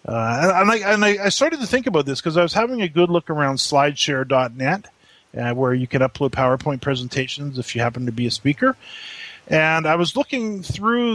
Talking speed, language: 205 wpm, English